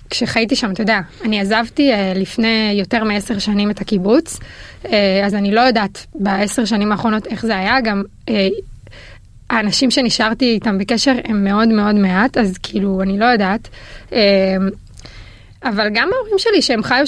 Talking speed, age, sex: 150 wpm, 20-39, female